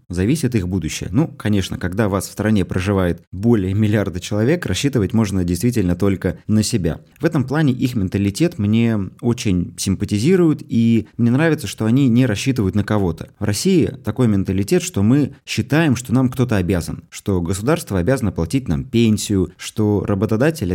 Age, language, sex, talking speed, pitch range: 20-39, Russian, male, 160 wpm, 95-125 Hz